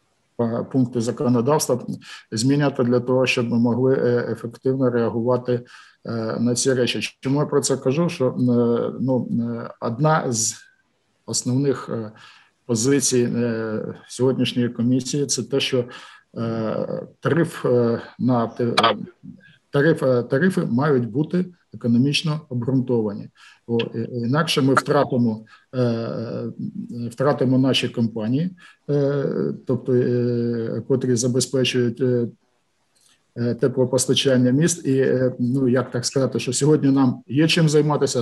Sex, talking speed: male, 95 wpm